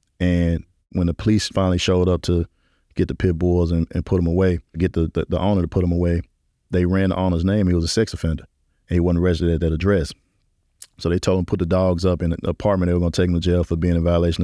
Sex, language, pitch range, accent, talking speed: male, English, 90-100 Hz, American, 280 wpm